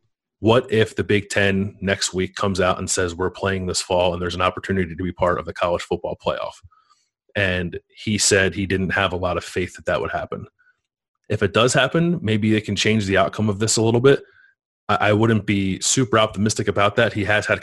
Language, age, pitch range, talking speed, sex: English, 30-49, 95-115 Hz, 230 wpm, male